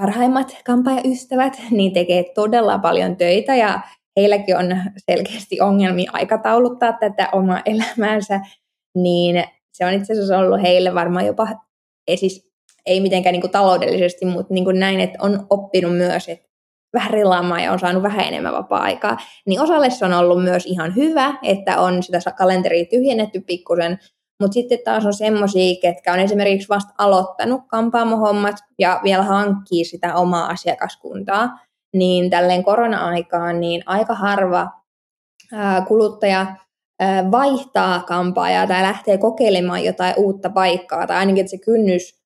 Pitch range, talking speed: 180-215 Hz, 145 wpm